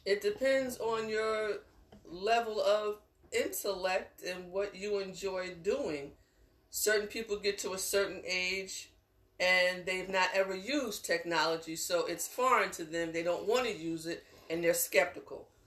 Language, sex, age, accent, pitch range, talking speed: English, female, 40-59, American, 175-225 Hz, 150 wpm